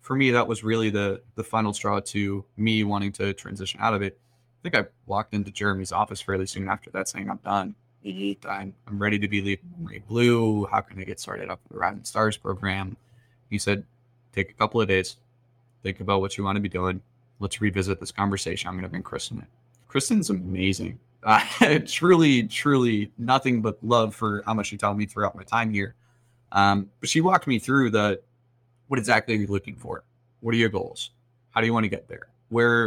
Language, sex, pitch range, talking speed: English, male, 100-120 Hz, 215 wpm